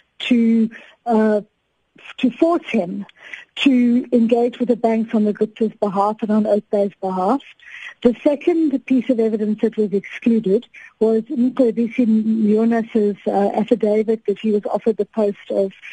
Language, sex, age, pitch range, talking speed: English, female, 50-69, 210-255 Hz, 145 wpm